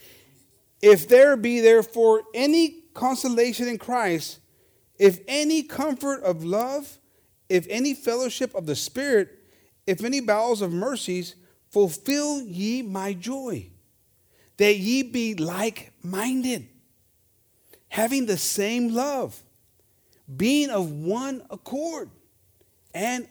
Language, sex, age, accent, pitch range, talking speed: English, male, 50-69, American, 135-225 Hz, 105 wpm